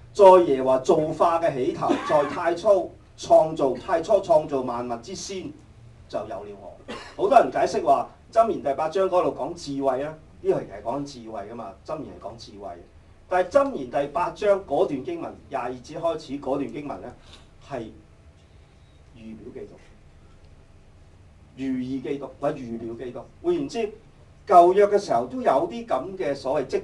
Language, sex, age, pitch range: Chinese, male, 40-59, 95-160 Hz